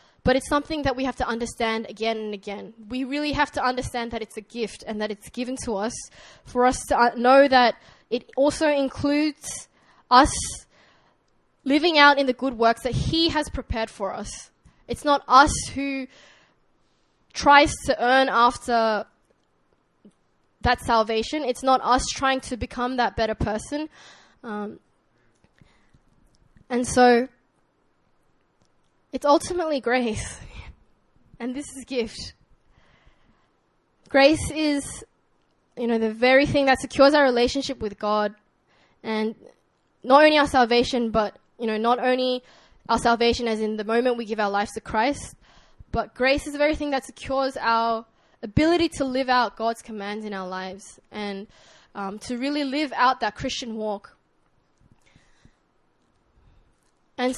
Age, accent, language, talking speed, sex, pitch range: 10-29, Australian, English, 145 wpm, female, 225-275 Hz